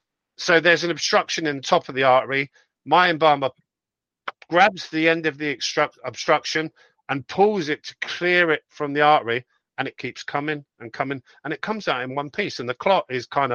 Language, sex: English, male